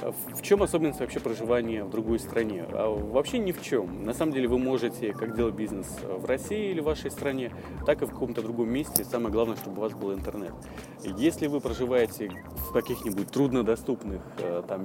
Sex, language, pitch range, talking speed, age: male, Russian, 95-130 Hz, 185 wpm, 20-39